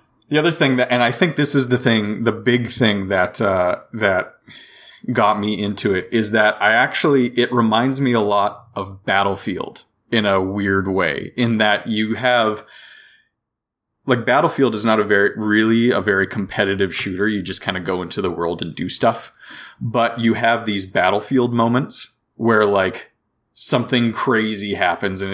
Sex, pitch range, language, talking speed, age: male, 100-120 Hz, English, 175 wpm, 30-49